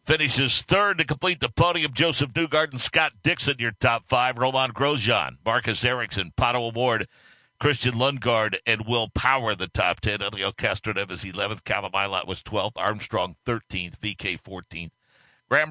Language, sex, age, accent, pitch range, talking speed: English, male, 60-79, American, 115-145 Hz, 155 wpm